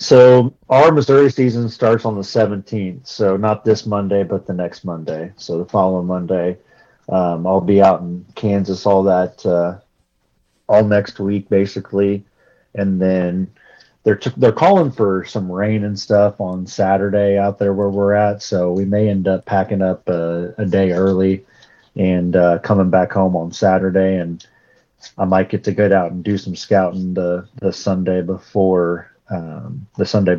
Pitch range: 90-105 Hz